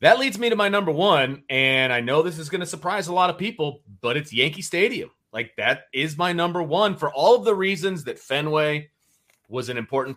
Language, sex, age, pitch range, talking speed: English, male, 30-49, 115-160 Hz, 230 wpm